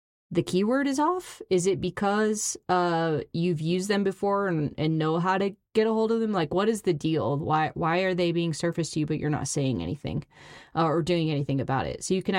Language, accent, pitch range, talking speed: English, American, 150-185 Hz, 235 wpm